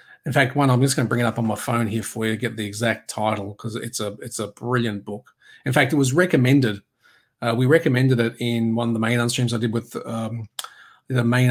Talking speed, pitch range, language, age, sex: 250 wpm, 115-140 Hz, English, 40-59, male